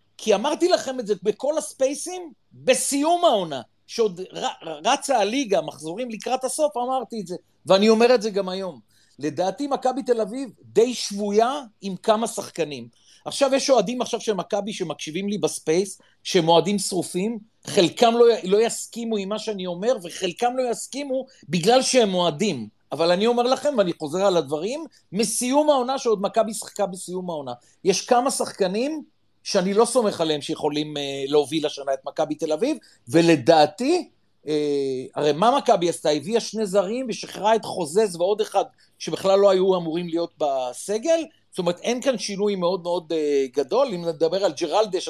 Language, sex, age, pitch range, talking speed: Hebrew, male, 40-59, 165-235 Hz, 155 wpm